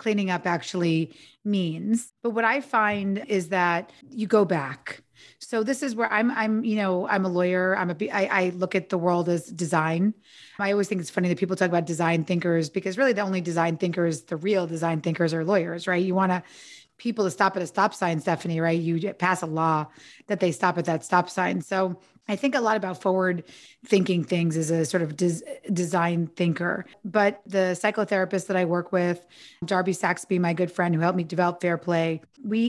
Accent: American